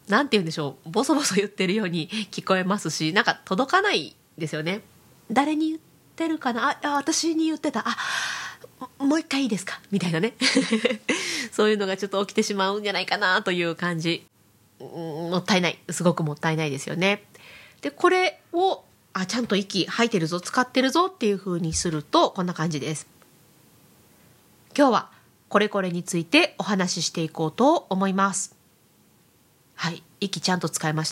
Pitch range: 170-250 Hz